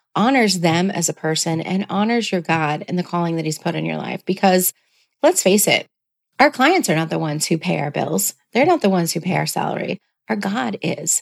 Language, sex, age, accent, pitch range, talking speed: English, female, 30-49, American, 170-220 Hz, 230 wpm